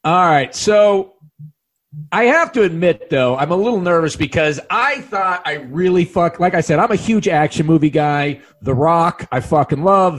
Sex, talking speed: male, 190 wpm